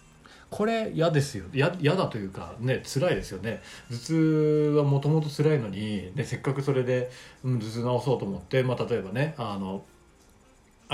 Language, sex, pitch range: Japanese, male, 105-150 Hz